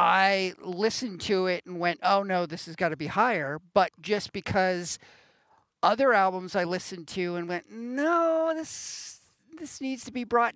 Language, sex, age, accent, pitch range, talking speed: English, male, 50-69, American, 170-220 Hz, 175 wpm